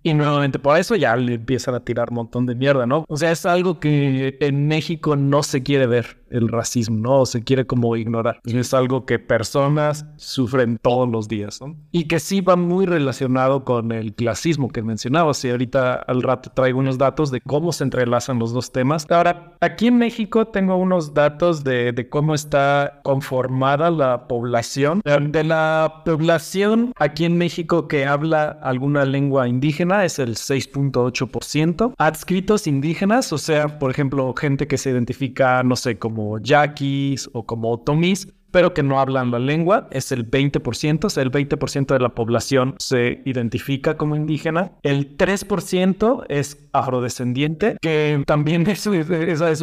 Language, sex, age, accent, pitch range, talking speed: Spanish, male, 30-49, Mexican, 130-160 Hz, 170 wpm